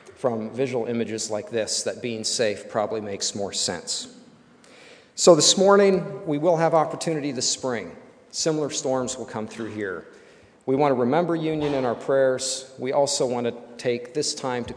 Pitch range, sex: 110-135 Hz, male